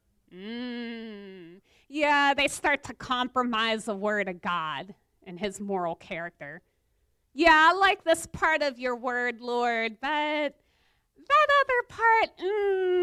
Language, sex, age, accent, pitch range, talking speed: English, female, 40-59, American, 220-320 Hz, 130 wpm